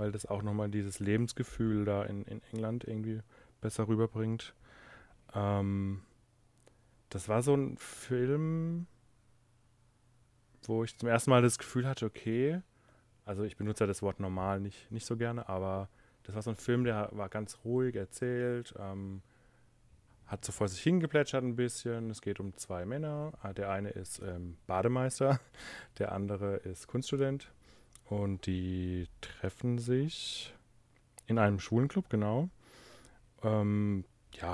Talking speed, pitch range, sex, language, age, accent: 140 wpm, 100-120 Hz, male, German, 30-49, German